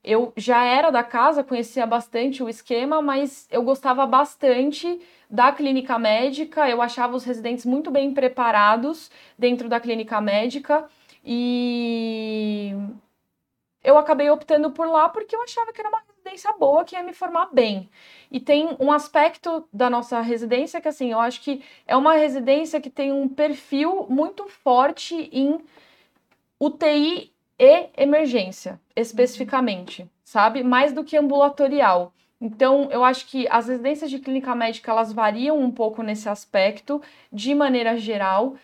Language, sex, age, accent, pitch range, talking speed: Portuguese, female, 20-39, Brazilian, 220-285 Hz, 150 wpm